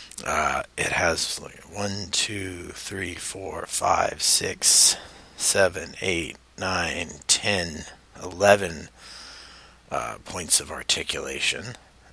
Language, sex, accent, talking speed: English, male, American, 95 wpm